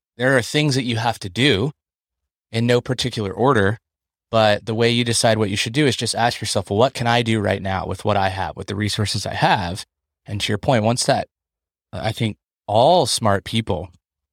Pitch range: 95-120 Hz